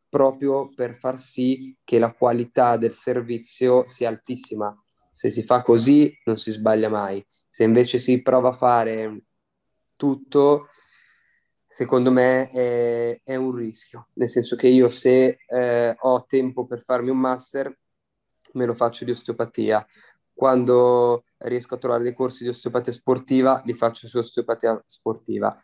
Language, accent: Italian, native